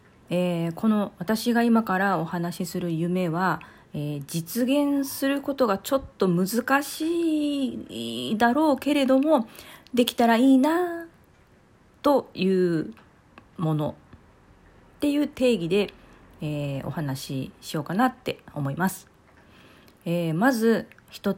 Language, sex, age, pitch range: Japanese, female, 40-59, 160-240 Hz